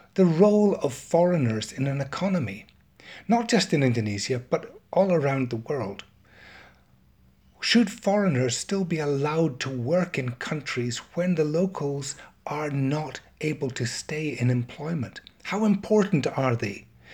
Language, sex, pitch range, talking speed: English, male, 120-170 Hz, 135 wpm